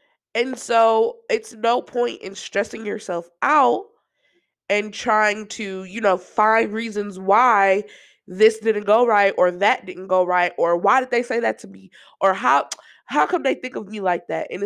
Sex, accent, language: female, American, English